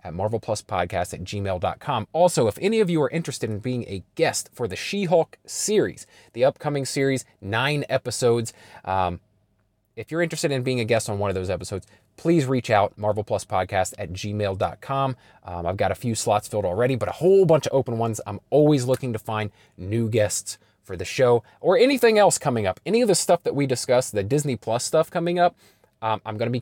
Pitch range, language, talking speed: 105-140 Hz, English, 215 wpm